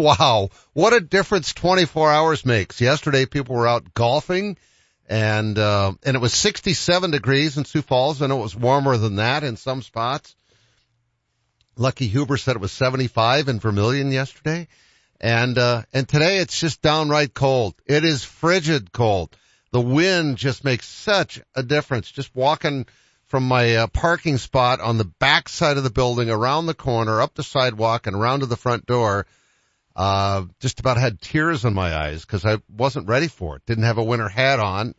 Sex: male